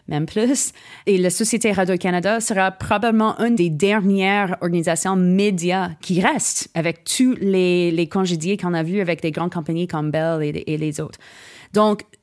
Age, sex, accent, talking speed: 30-49, female, Canadian, 165 wpm